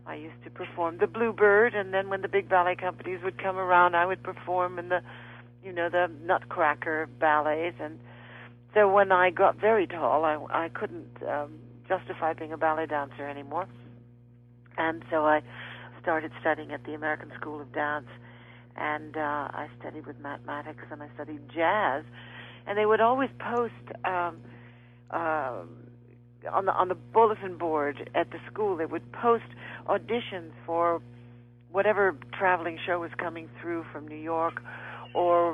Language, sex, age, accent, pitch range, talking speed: English, female, 60-79, American, 125-175 Hz, 160 wpm